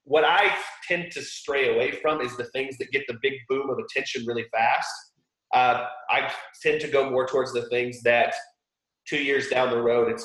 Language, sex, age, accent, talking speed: English, male, 30-49, American, 205 wpm